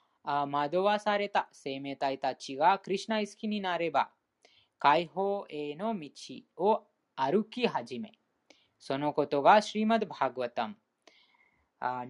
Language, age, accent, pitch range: Japanese, 20-39, Indian, 140-210 Hz